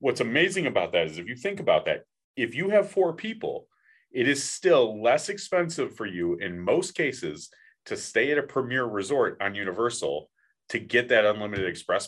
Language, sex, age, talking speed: English, male, 30-49, 190 wpm